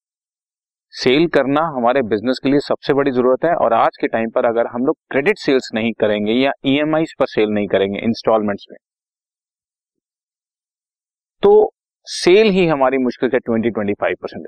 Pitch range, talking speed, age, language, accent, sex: 115-165 Hz, 160 wpm, 40-59, Hindi, native, male